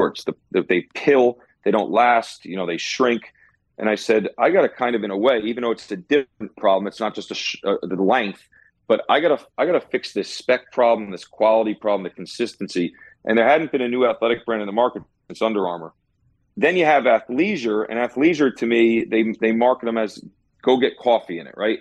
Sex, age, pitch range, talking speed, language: male, 40-59, 100-115 Hz, 230 wpm, English